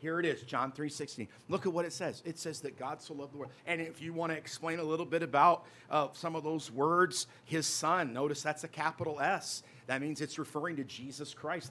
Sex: male